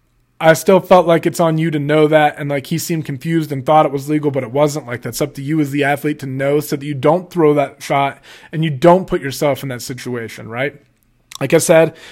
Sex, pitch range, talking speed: male, 140-165 Hz, 260 wpm